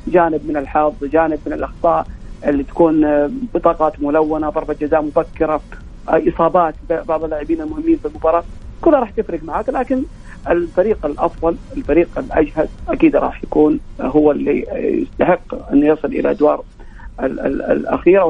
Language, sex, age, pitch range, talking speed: Arabic, male, 40-59, 145-170 Hz, 130 wpm